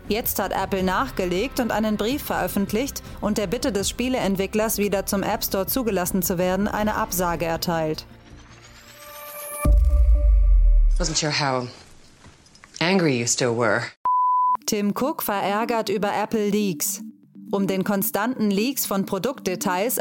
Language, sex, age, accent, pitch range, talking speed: German, female, 30-49, German, 185-220 Hz, 100 wpm